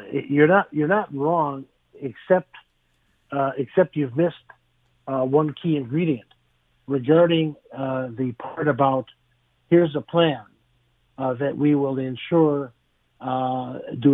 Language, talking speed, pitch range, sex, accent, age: English, 125 wpm, 130-165 Hz, male, American, 50-69